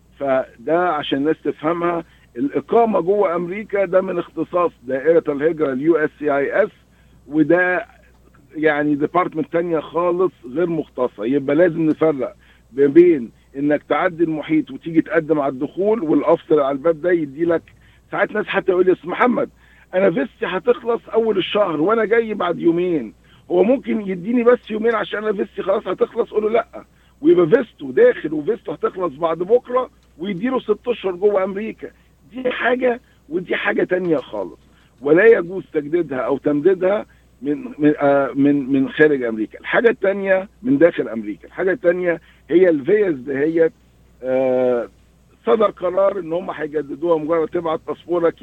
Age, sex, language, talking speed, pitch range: 50-69, male, Arabic, 140 wpm, 150-215 Hz